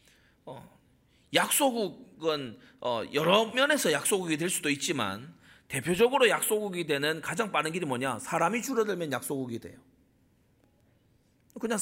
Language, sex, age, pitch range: Korean, male, 40-59, 130-215 Hz